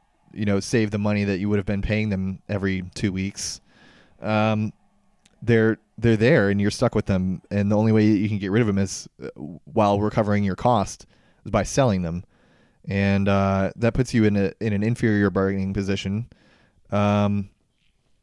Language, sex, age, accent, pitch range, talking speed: English, male, 20-39, American, 95-105 Hz, 185 wpm